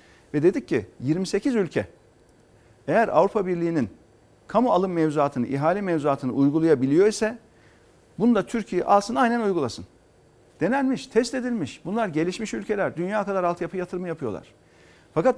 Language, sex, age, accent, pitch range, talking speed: Turkish, male, 50-69, native, 140-200 Hz, 130 wpm